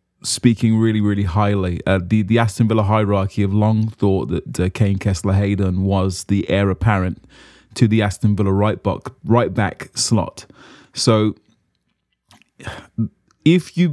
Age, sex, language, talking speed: 20-39, male, English, 140 wpm